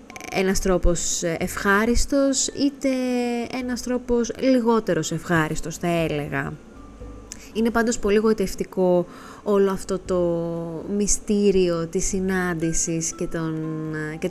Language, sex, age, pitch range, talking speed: Greek, female, 20-39, 170-230 Hz, 95 wpm